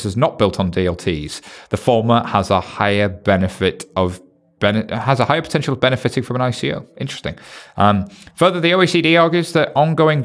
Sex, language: male, English